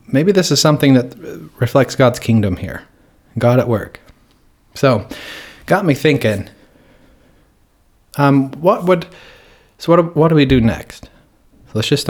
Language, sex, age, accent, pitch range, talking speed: English, male, 30-49, American, 110-140 Hz, 150 wpm